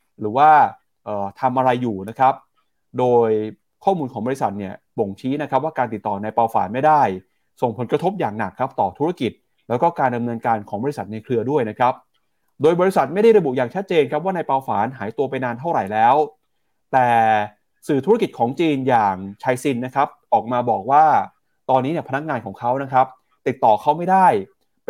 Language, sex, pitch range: Thai, male, 115-145 Hz